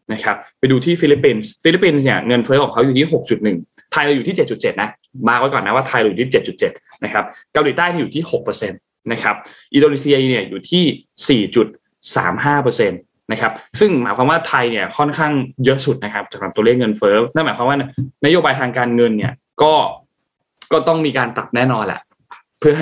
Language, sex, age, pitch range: Thai, male, 20-39, 115-145 Hz